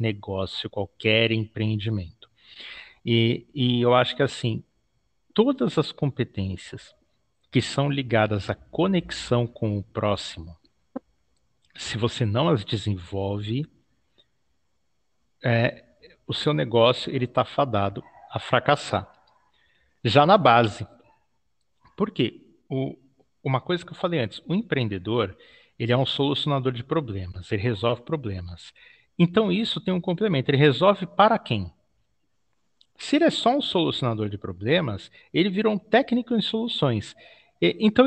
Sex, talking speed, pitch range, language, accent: male, 125 wpm, 110-170 Hz, Portuguese, Brazilian